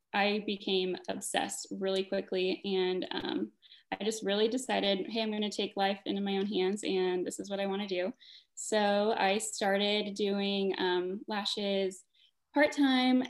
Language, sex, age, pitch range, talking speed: English, female, 10-29, 195-230 Hz, 160 wpm